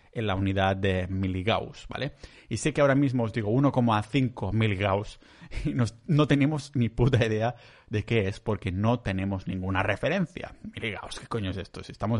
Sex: male